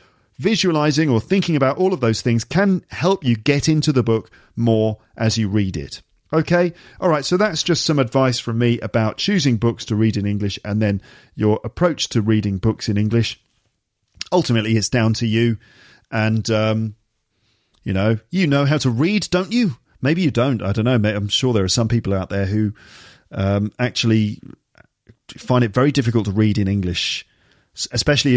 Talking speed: 185 wpm